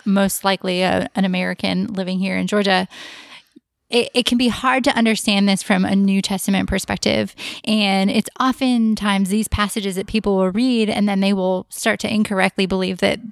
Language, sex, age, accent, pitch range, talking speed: English, female, 20-39, American, 195-230 Hz, 180 wpm